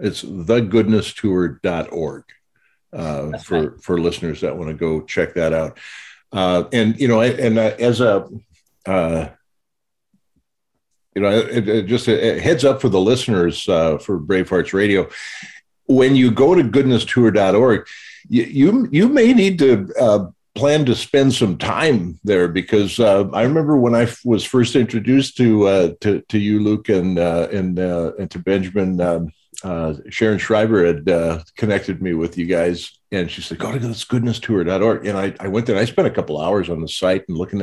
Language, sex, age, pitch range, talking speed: English, male, 50-69, 85-120 Hz, 180 wpm